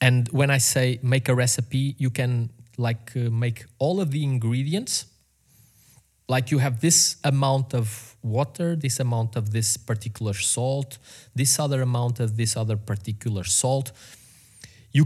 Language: English